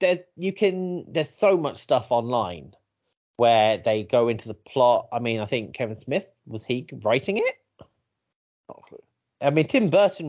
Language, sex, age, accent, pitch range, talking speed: English, male, 40-59, British, 105-155 Hz, 180 wpm